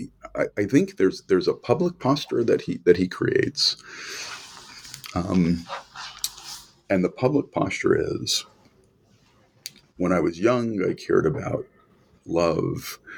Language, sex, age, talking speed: English, male, 50-69, 125 wpm